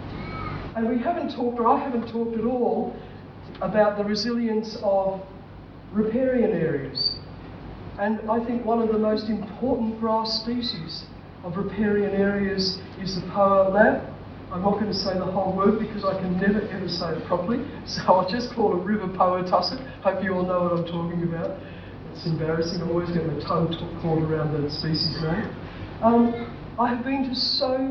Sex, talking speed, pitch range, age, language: female, 180 wpm, 170-220 Hz, 50-69, English